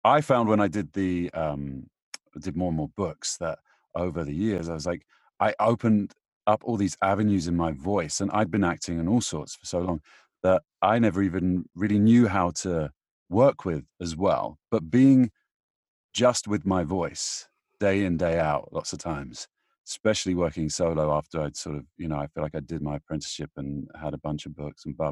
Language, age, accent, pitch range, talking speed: English, 40-59, British, 80-105 Hz, 210 wpm